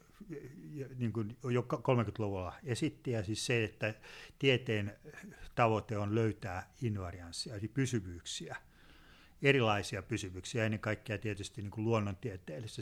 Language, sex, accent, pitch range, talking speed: Finnish, male, native, 105-130 Hz, 110 wpm